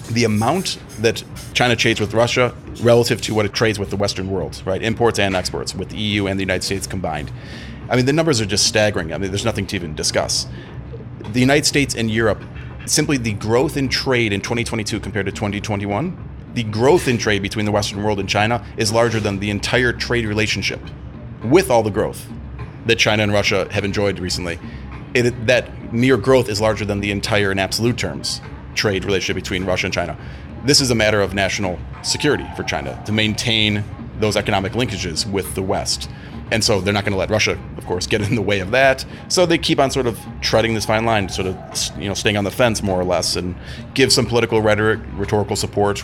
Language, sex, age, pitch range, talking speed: English, male, 30-49, 100-120 Hz, 210 wpm